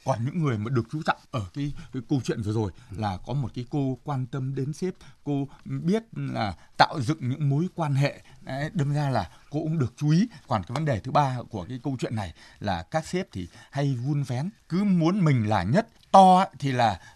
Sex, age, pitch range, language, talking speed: male, 20-39, 120-155 Hz, Vietnamese, 230 wpm